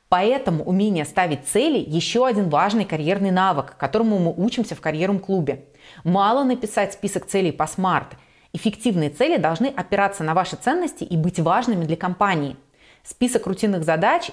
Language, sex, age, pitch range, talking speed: Russian, female, 30-49, 160-210 Hz, 150 wpm